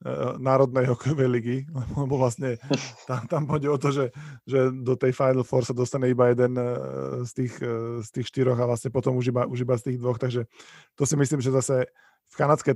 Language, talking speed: Slovak, 175 wpm